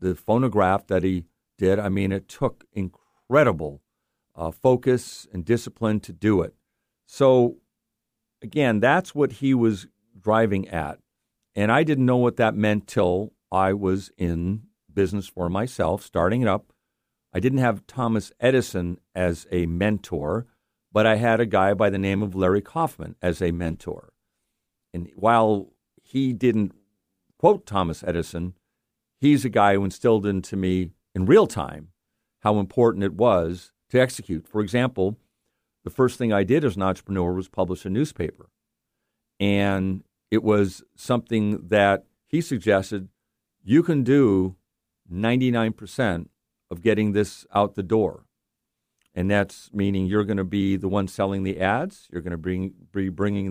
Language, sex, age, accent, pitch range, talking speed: English, male, 50-69, American, 95-115 Hz, 150 wpm